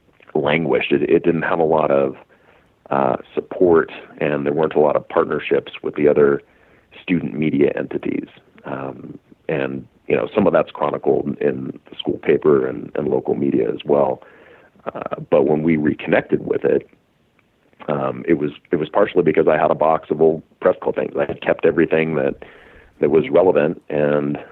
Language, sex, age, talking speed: English, male, 40-59, 175 wpm